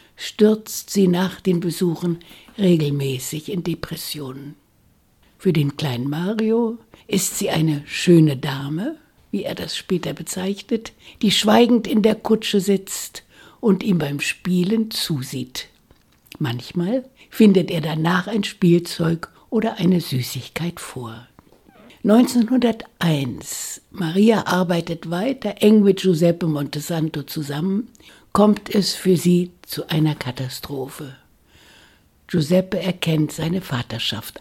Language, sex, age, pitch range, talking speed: German, female, 60-79, 150-200 Hz, 110 wpm